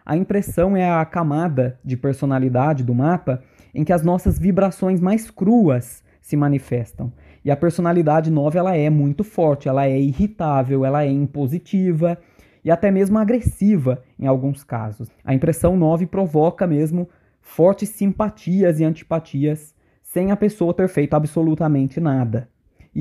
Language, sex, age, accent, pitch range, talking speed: Portuguese, male, 20-39, Brazilian, 140-180 Hz, 145 wpm